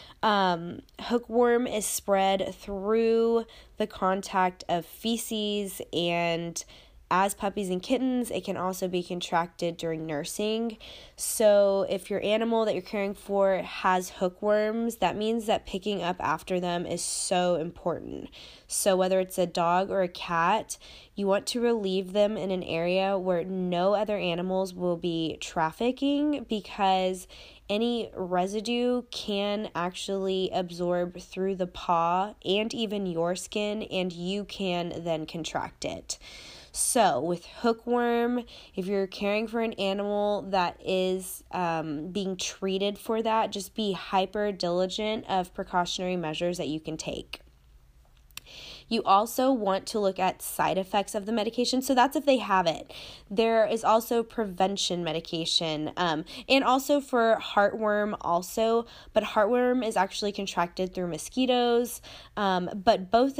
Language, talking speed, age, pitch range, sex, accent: English, 140 wpm, 20-39, 180-220 Hz, female, American